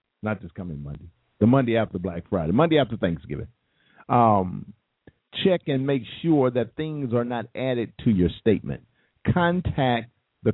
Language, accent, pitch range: English, American, 100-140 Hz